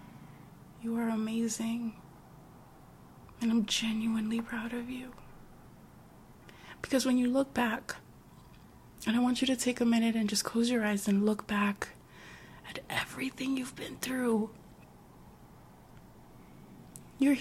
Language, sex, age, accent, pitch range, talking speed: English, female, 20-39, American, 215-245 Hz, 125 wpm